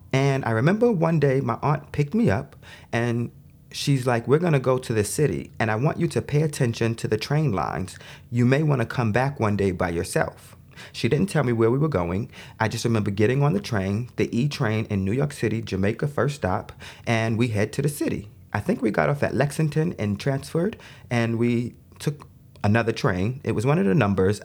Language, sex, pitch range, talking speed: English, male, 105-140 Hz, 225 wpm